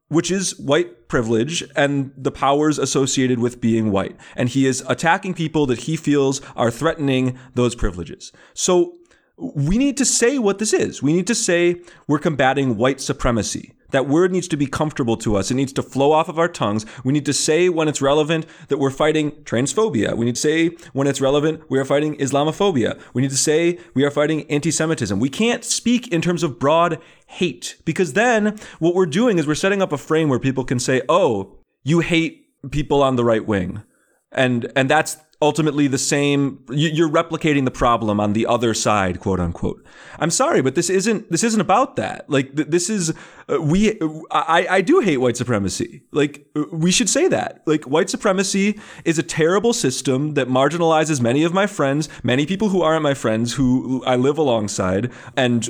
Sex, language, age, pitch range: male, English, 30-49, 130-170 Hz